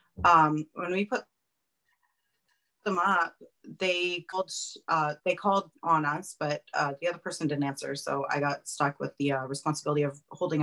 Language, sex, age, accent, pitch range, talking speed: English, female, 30-49, American, 150-180 Hz, 170 wpm